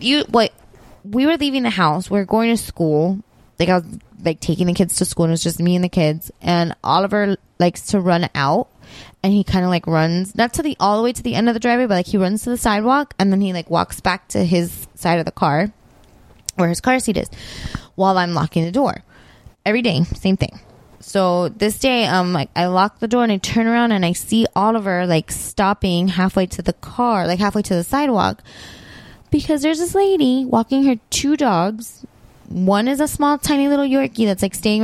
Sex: female